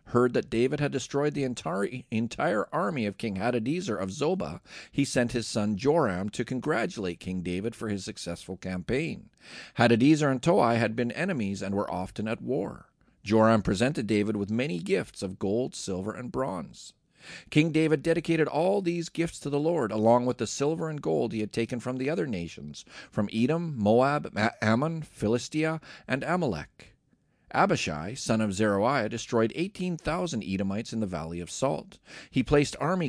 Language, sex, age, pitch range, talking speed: English, male, 40-59, 105-140 Hz, 170 wpm